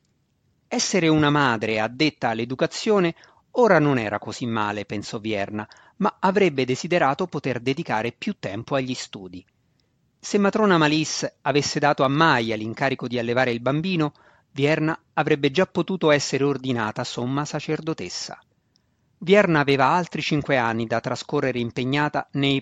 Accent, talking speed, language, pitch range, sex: native, 135 wpm, Italian, 125-170 Hz, male